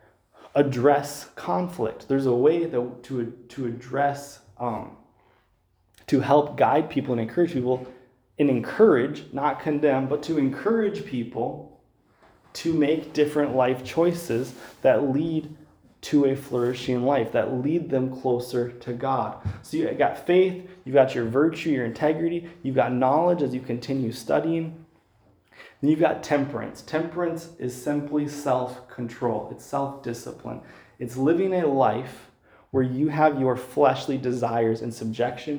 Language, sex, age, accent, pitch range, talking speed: English, male, 20-39, American, 120-145 Hz, 135 wpm